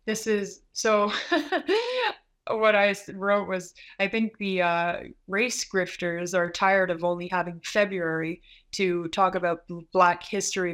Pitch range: 175-205 Hz